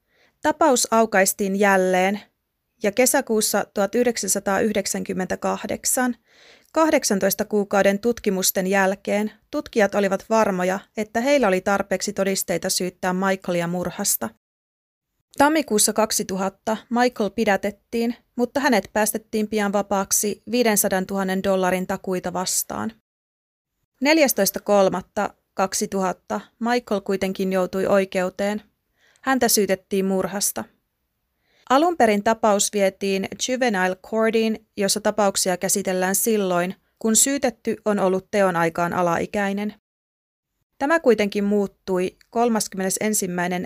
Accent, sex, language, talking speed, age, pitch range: native, female, Finnish, 85 wpm, 30-49, 185-220 Hz